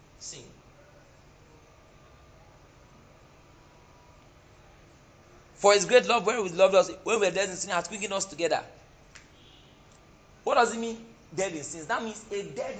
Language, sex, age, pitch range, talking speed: English, male, 40-59, 145-225 Hz, 135 wpm